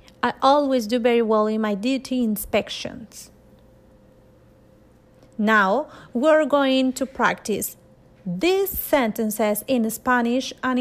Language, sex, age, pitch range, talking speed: English, female, 30-49, 225-280 Hz, 105 wpm